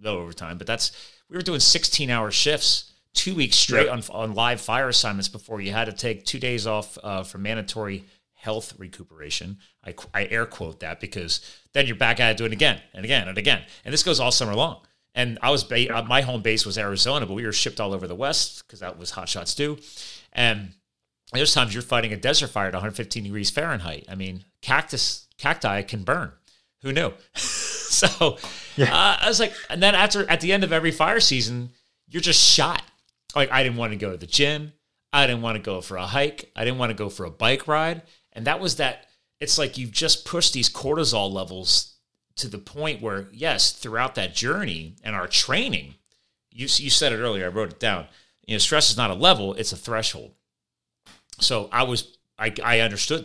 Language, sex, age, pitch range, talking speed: English, male, 30-49, 100-140 Hz, 215 wpm